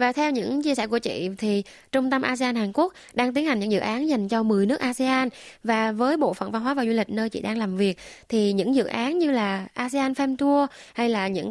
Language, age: Vietnamese, 20-39